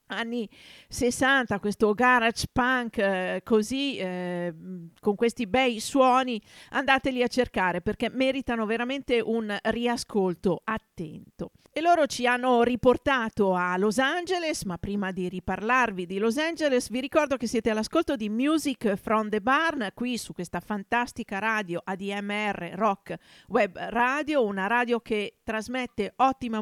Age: 40-59